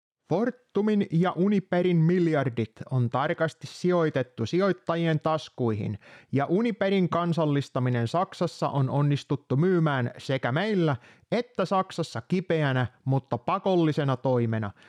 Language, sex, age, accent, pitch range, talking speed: Finnish, male, 30-49, native, 135-180 Hz, 95 wpm